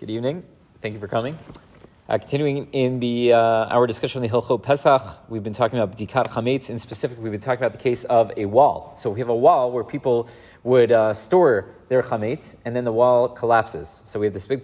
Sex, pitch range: male, 115-150 Hz